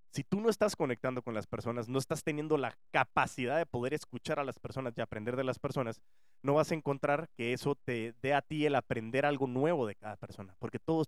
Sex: male